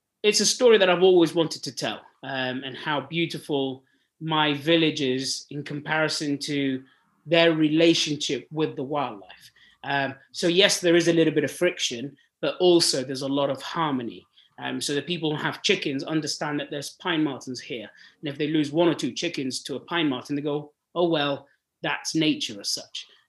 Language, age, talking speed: English, 30-49, 190 wpm